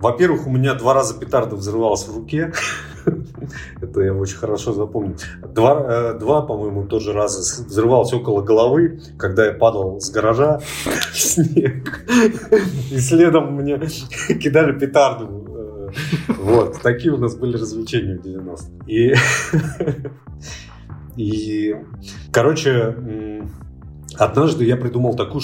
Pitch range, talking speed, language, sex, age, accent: 100-135 Hz, 120 wpm, Russian, male, 30-49, native